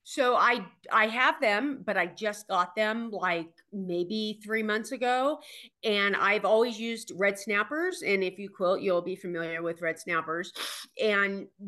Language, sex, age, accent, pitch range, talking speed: English, female, 40-59, American, 170-215 Hz, 165 wpm